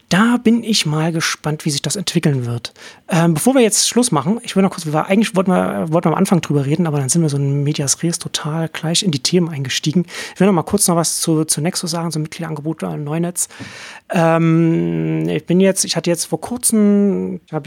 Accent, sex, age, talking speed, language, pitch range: German, male, 30-49, 235 wpm, German, 145-170 Hz